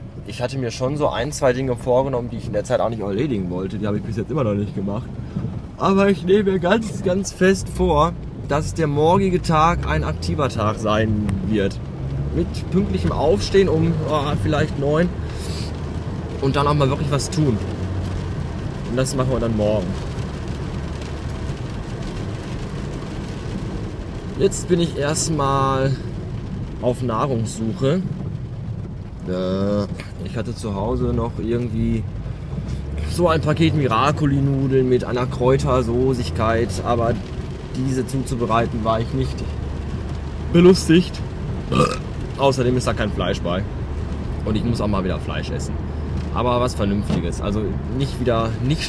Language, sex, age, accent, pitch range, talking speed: German, male, 20-39, German, 100-145 Hz, 135 wpm